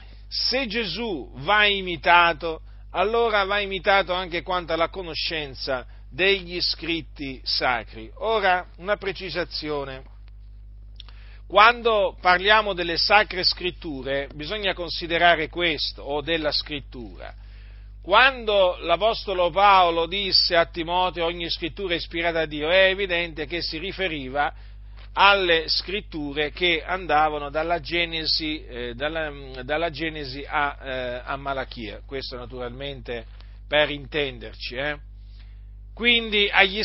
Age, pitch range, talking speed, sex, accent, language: 50-69, 130-185 Hz, 105 wpm, male, native, Italian